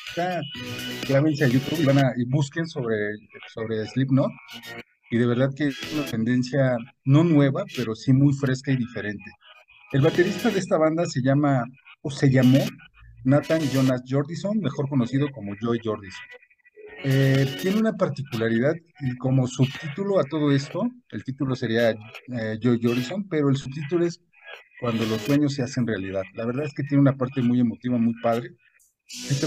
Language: Spanish